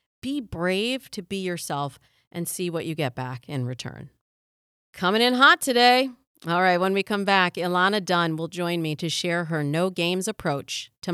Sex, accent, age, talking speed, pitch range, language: female, American, 40-59, 185 wpm, 140-205 Hz, English